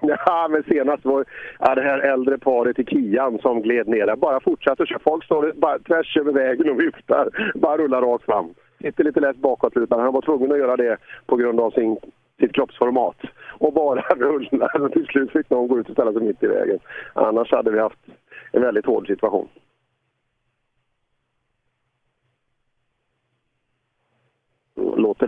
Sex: male